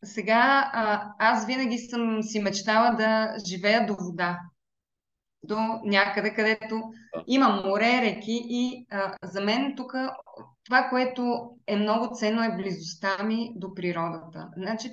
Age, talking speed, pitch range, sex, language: 20-39, 135 wpm, 200-250 Hz, female, Bulgarian